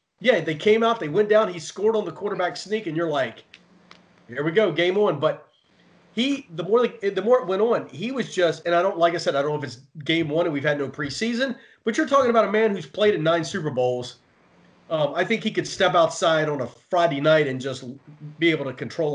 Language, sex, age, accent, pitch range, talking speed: English, male, 30-49, American, 150-210 Hz, 250 wpm